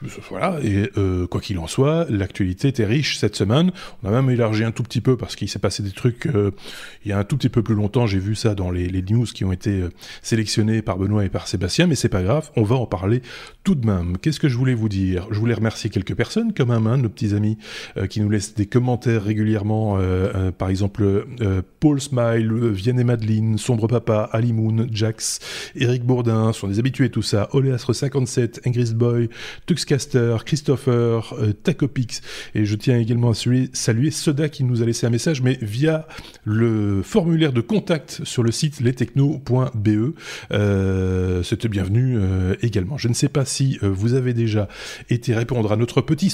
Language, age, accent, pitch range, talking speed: French, 20-39, French, 105-130 Hz, 205 wpm